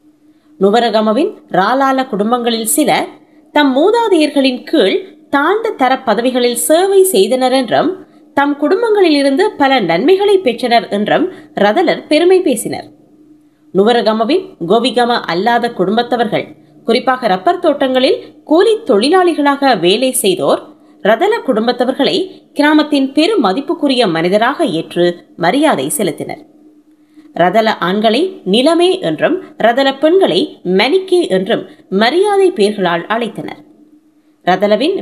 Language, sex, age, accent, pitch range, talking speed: Tamil, female, 20-39, native, 230-330 Hz, 90 wpm